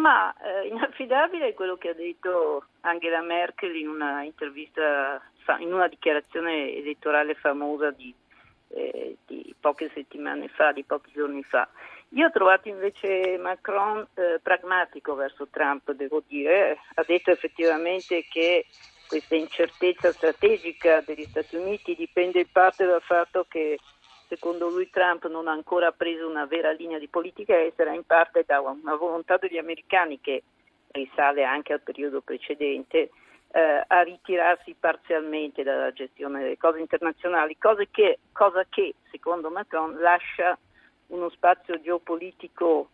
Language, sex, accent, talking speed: Italian, female, native, 140 wpm